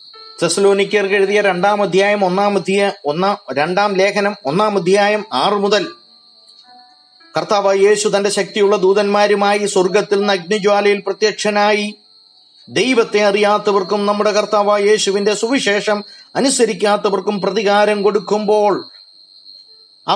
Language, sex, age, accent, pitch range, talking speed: Malayalam, male, 30-49, native, 195-215 Hz, 90 wpm